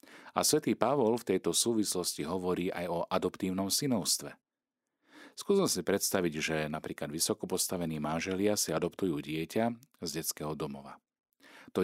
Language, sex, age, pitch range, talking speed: Slovak, male, 40-59, 80-105 Hz, 125 wpm